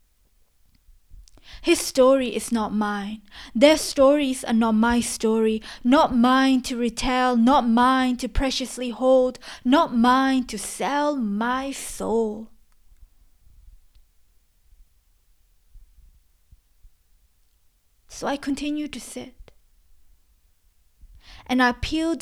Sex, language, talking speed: female, English, 90 wpm